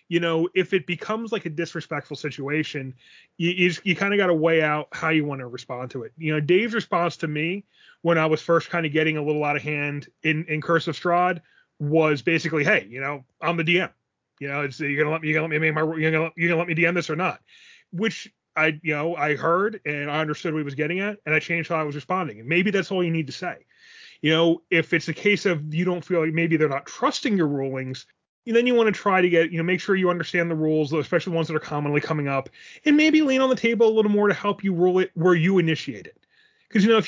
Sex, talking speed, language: male, 260 wpm, English